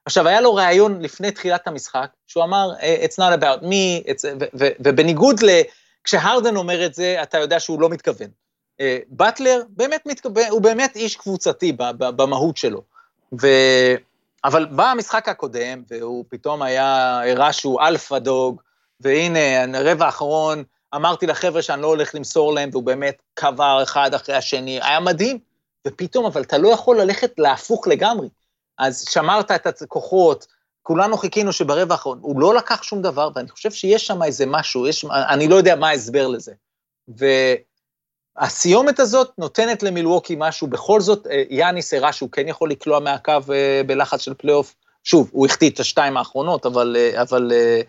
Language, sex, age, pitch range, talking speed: Hebrew, male, 30-49, 135-200 Hz, 155 wpm